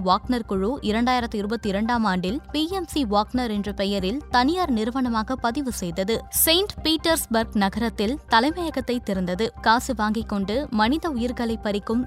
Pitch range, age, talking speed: 210-265 Hz, 20-39, 120 wpm